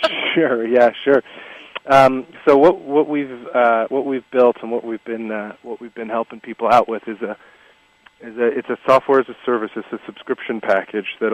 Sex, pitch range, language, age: male, 105-120 Hz, English, 40-59